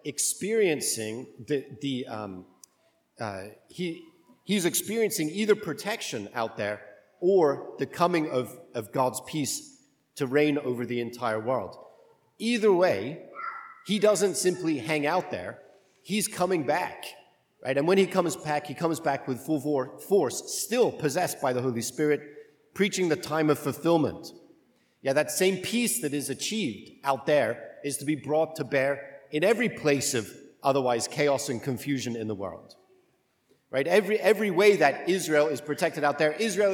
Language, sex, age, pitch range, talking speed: English, male, 40-59, 130-180 Hz, 155 wpm